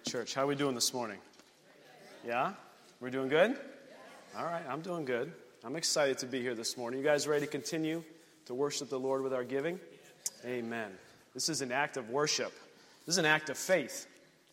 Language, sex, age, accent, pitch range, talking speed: English, male, 30-49, American, 130-155 Hz, 200 wpm